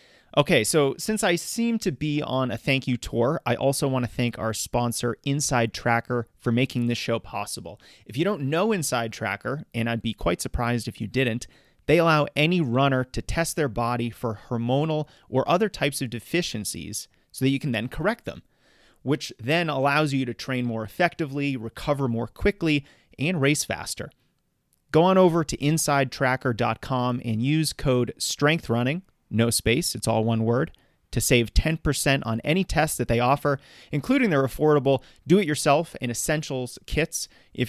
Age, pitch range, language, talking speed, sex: 30-49, 115-150 Hz, English, 170 wpm, male